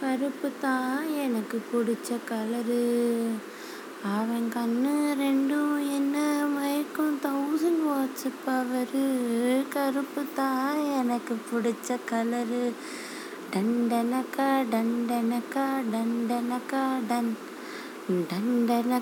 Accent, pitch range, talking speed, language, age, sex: native, 240-295 Hz, 60 wpm, Tamil, 20-39, female